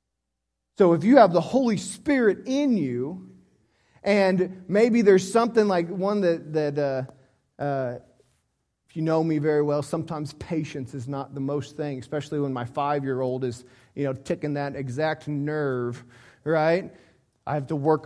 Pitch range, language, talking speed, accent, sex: 145-225 Hz, English, 160 wpm, American, male